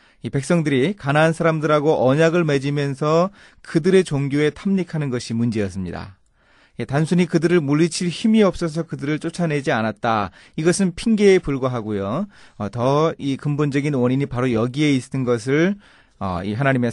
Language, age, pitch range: Korean, 30-49, 120-170 Hz